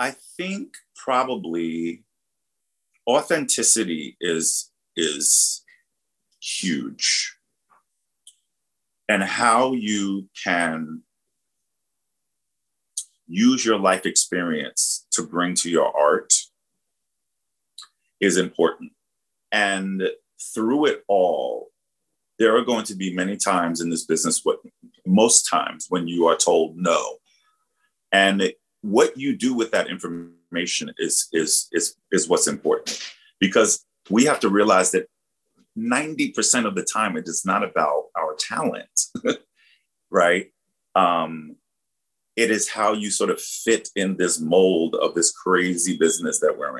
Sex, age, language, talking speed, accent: male, 40-59, English, 115 wpm, American